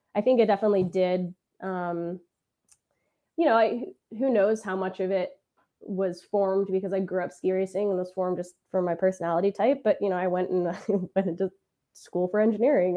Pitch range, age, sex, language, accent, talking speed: 180-225 Hz, 20-39, female, English, American, 190 wpm